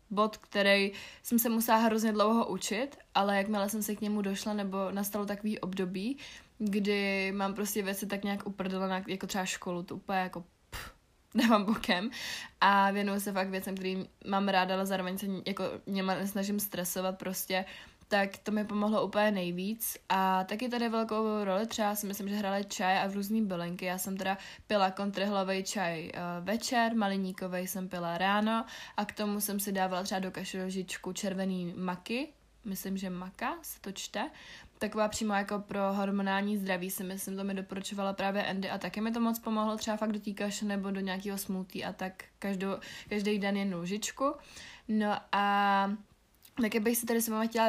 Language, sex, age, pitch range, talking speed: Czech, female, 20-39, 190-210 Hz, 175 wpm